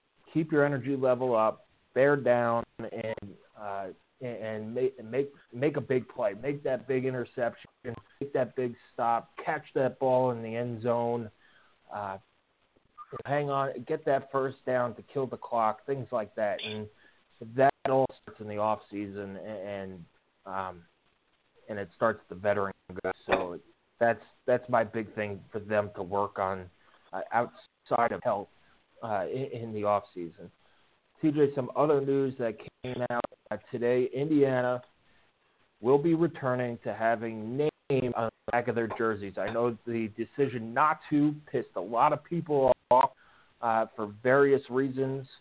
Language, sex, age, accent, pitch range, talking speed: English, male, 30-49, American, 110-135 Hz, 160 wpm